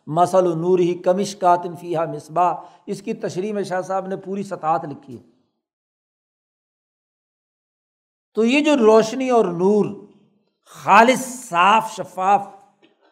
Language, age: Urdu, 60-79